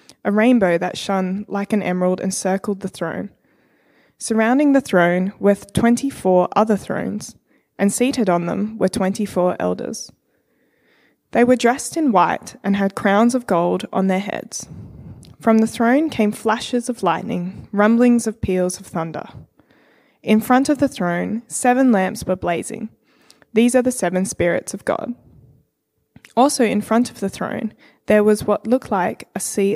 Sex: female